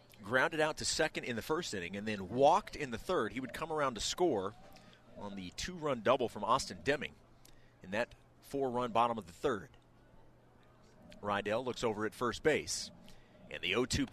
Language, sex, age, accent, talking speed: English, male, 40-59, American, 185 wpm